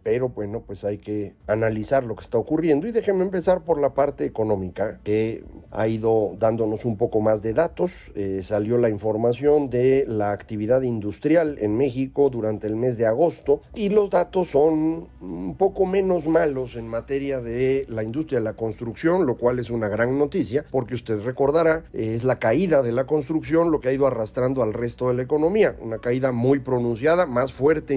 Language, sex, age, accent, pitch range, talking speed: Spanish, male, 50-69, Mexican, 110-145 Hz, 190 wpm